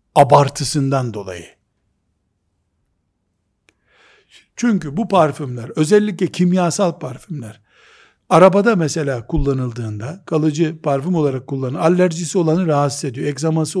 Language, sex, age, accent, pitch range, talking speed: Turkish, male, 60-79, native, 135-200 Hz, 85 wpm